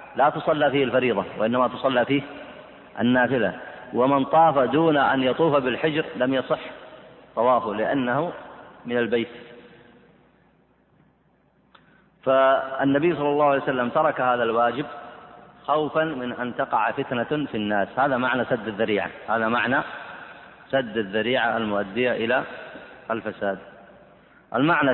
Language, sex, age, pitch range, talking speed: Arabic, male, 30-49, 110-135 Hz, 115 wpm